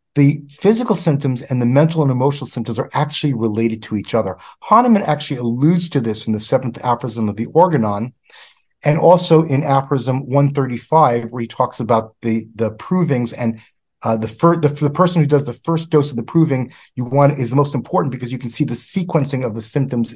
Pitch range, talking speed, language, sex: 125-170 Hz, 210 wpm, English, male